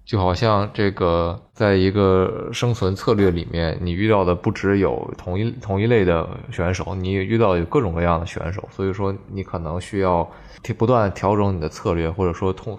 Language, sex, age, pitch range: Chinese, male, 20-39, 90-110 Hz